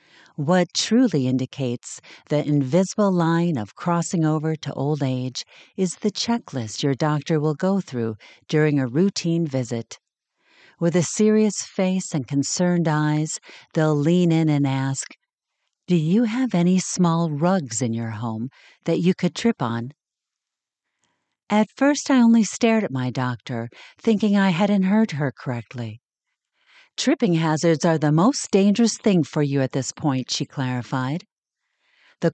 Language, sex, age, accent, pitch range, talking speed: English, female, 50-69, American, 135-190 Hz, 145 wpm